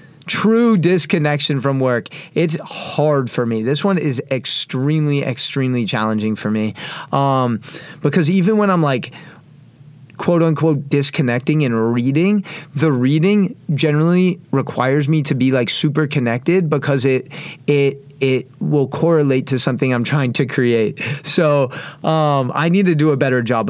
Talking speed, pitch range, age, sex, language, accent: 145 wpm, 135-165 Hz, 30-49, male, English, American